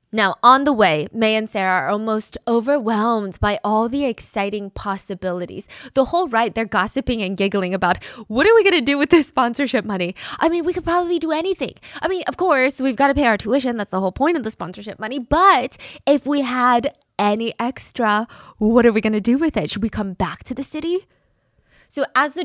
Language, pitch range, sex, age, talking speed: English, 200-260 Hz, female, 20-39, 220 wpm